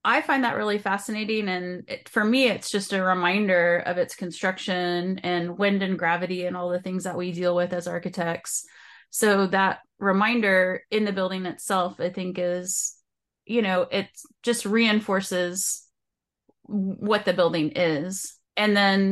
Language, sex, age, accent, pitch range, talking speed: English, female, 30-49, American, 175-205 Hz, 155 wpm